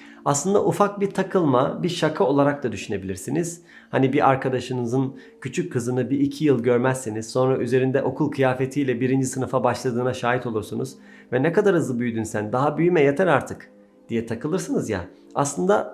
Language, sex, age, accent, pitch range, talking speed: Turkish, male, 40-59, native, 120-150 Hz, 155 wpm